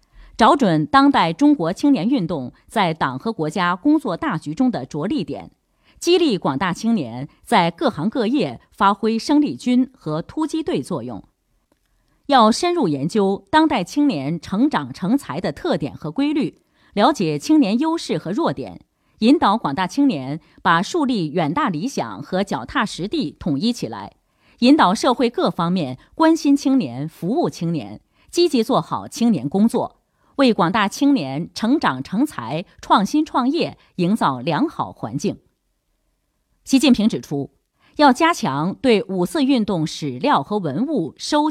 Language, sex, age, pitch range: Chinese, female, 30-49, 170-285 Hz